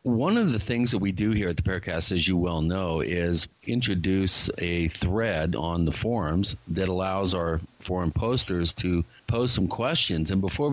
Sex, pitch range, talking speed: male, 85-110 Hz, 185 wpm